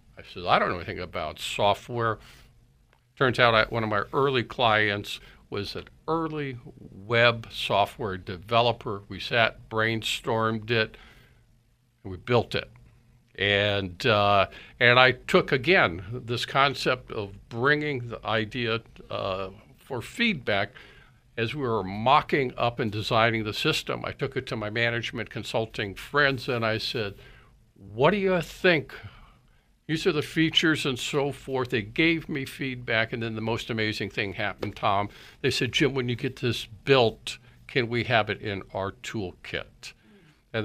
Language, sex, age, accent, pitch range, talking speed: English, male, 60-79, American, 110-135 Hz, 155 wpm